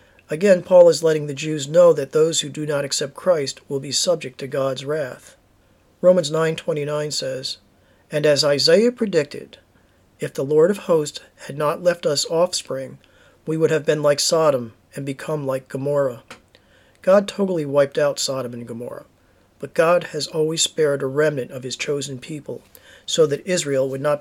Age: 40-59